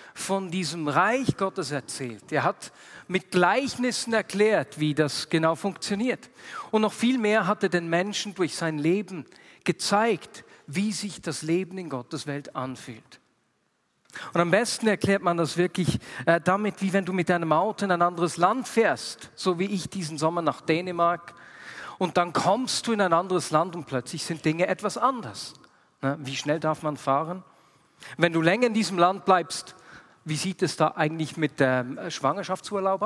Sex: male